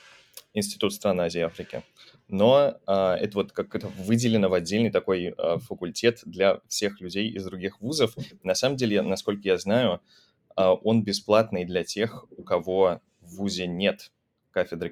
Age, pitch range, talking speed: 20-39, 85-100 Hz, 160 wpm